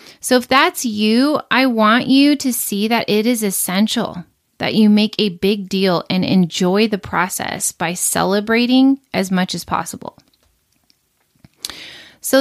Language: English